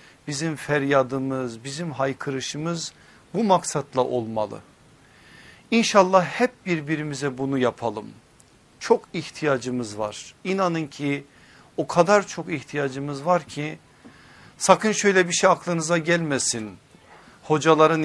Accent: Turkish